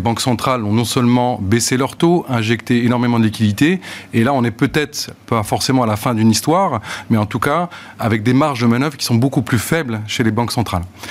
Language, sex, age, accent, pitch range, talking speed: French, male, 30-49, French, 105-135 Hz, 225 wpm